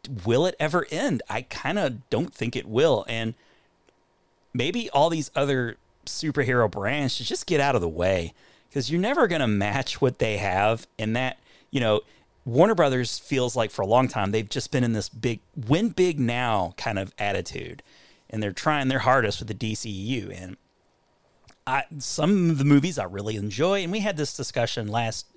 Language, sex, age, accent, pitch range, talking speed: English, male, 40-59, American, 105-140 Hz, 190 wpm